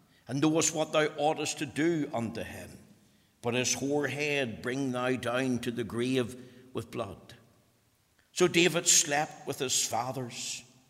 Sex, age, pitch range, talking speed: male, 60-79, 110-140 Hz, 150 wpm